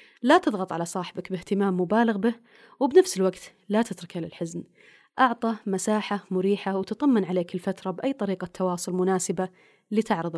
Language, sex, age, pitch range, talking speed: Arabic, female, 30-49, 175-240 Hz, 135 wpm